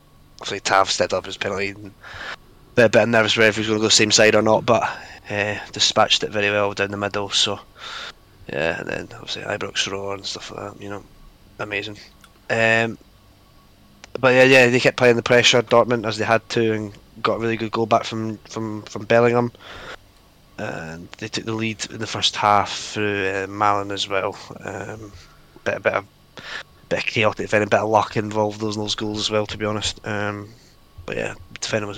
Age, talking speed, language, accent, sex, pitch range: 20-39, 215 wpm, English, British, male, 100-115 Hz